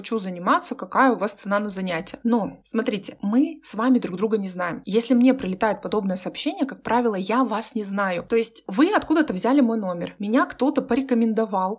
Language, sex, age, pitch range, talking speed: Russian, female, 20-39, 195-245 Hz, 190 wpm